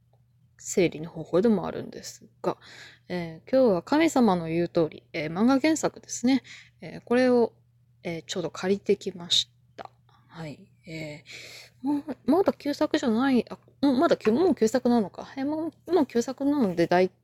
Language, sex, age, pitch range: Japanese, female, 20-39, 180-270 Hz